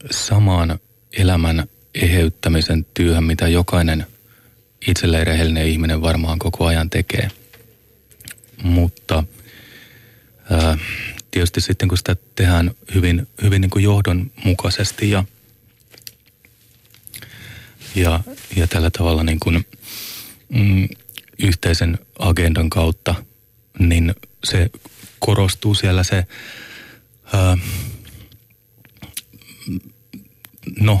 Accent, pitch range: native, 85-110 Hz